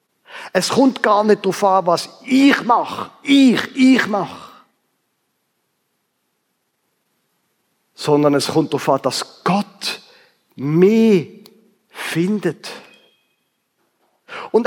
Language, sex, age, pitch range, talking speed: German, male, 50-69, 180-230 Hz, 90 wpm